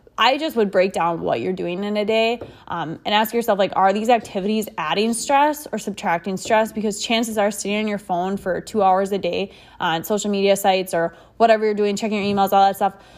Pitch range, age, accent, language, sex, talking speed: 190-225 Hz, 20-39, American, English, female, 230 wpm